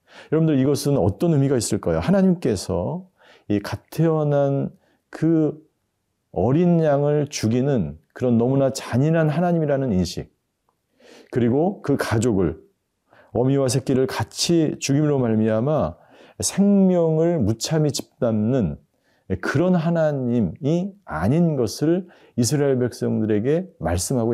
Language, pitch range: Korean, 110-160 Hz